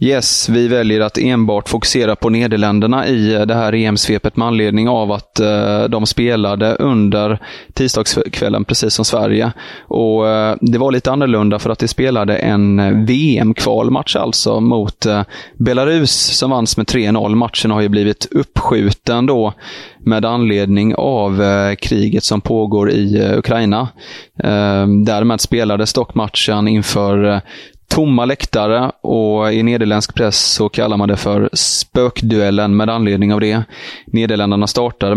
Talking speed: 145 wpm